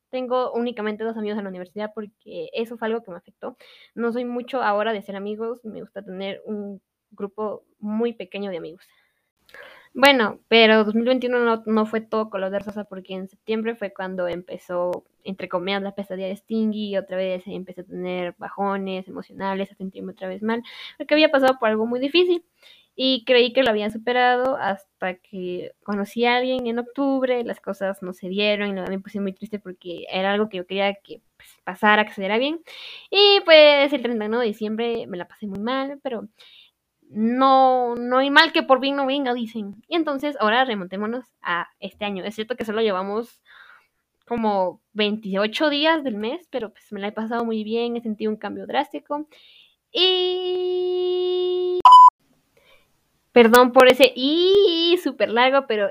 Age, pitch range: 10-29, 200-260 Hz